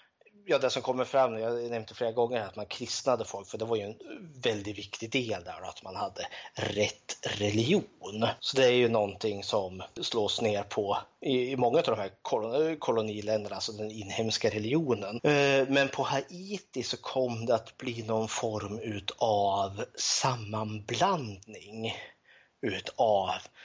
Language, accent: Swedish, native